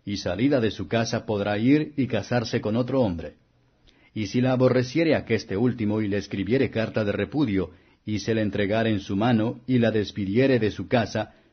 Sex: male